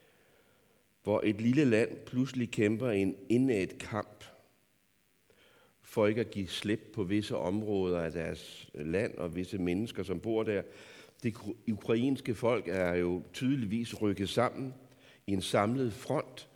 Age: 60-79